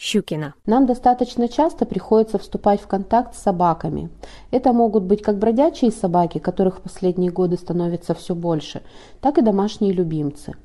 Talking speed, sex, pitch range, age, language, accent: 145 wpm, female, 180-225 Hz, 30-49, Russian, native